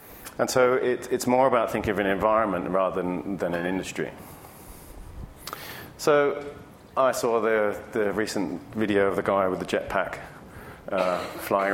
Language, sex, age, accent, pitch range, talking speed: English, male, 40-59, British, 95-115 Hz, 155 wpm